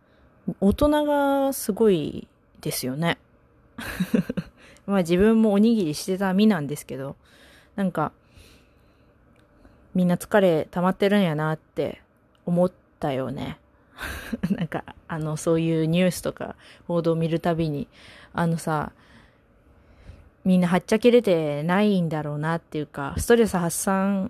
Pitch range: 150-205 Hz